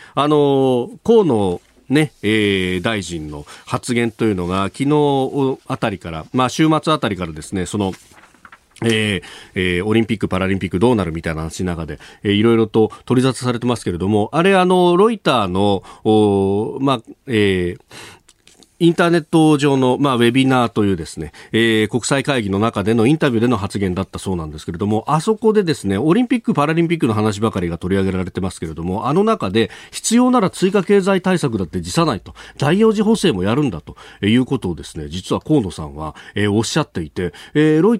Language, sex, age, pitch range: Japanese, male, 40-59, 95-150 Hz